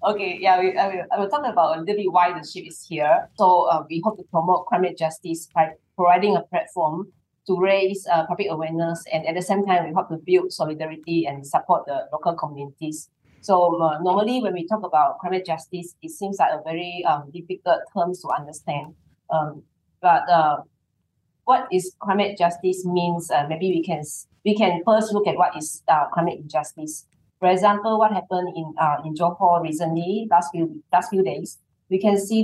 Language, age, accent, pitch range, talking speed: English, 20-39, Malaysian, 160-190 Hz, 200 wpm